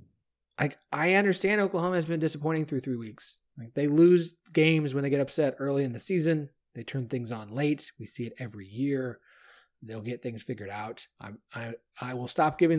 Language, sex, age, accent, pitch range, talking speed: English, male, 30-49, American, 120-170 Hz, 195 wpm